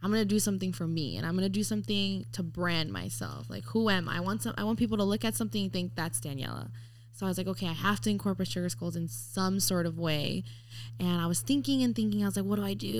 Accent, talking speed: American, 290 wpm